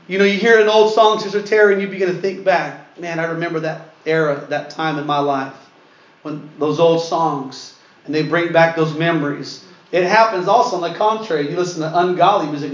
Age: 40-59